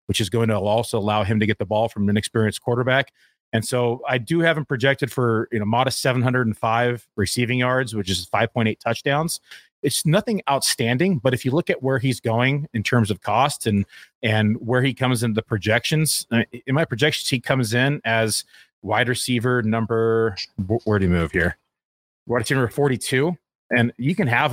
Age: 30-49